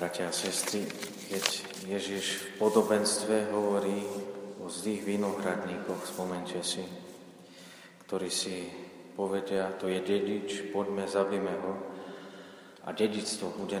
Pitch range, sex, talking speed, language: 95-105 Hz, male, 105 wpm, Slovak